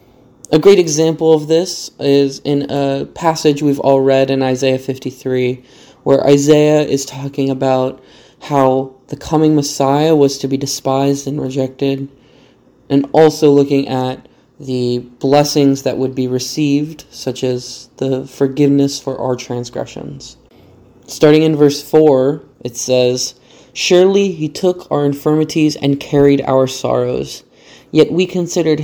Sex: male